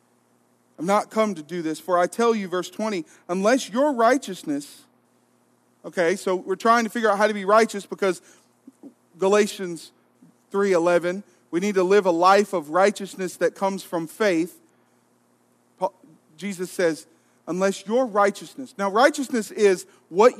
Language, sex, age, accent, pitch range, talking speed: English, male, 40-59, American, 180-225 Hz, 145 wpm